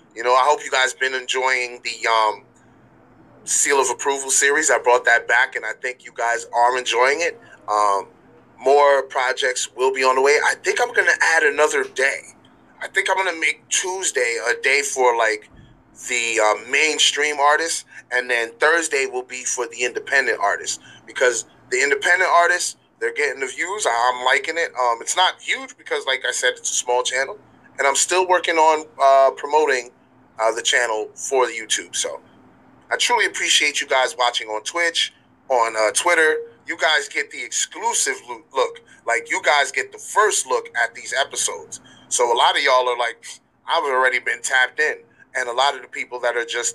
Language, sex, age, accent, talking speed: English, male, 30-49, American, 195 wpm